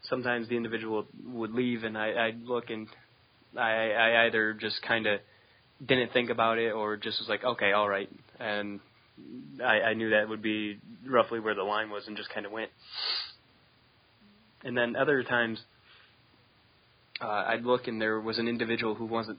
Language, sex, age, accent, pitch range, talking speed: English, male, 20-39, American, 105-120 Hz, 175 wpm